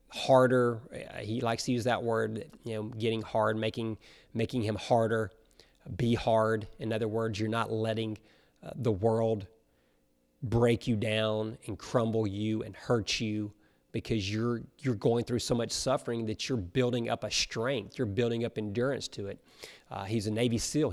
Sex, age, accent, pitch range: male, 30-49, American, 110-135 Hz